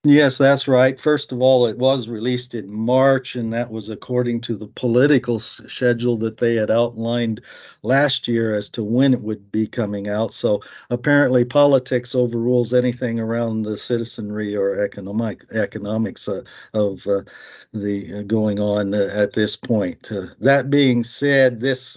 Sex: male